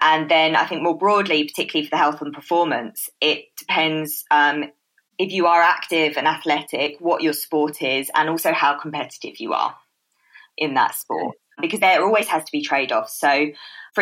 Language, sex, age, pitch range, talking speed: English, female, 20-39, 145-165 Hz, 190 wpm